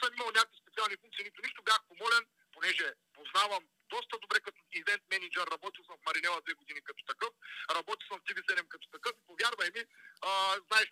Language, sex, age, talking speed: Bulgarian, male, 40-59, 185 wpm